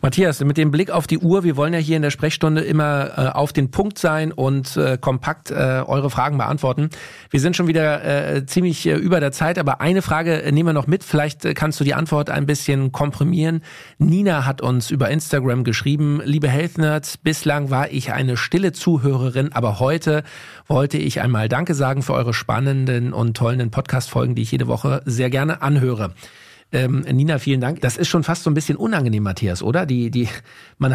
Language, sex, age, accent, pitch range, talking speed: German, male, 40-59, German, 125-155 Hz, 200 wpm